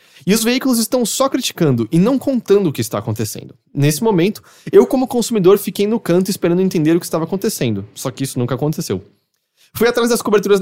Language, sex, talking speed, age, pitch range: English, male, 205 wpm, 20-39, 135-195 Hz